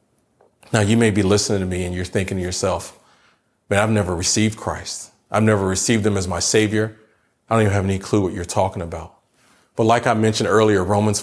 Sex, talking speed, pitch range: male, 215 wpm, 100-120 Hz